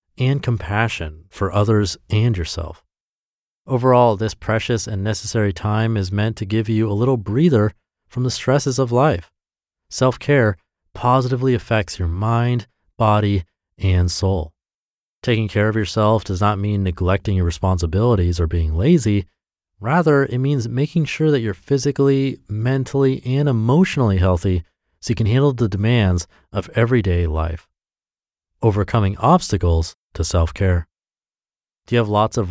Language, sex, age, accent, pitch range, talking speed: English, male, 30-49, American, 90-125 Hz, 145 wpm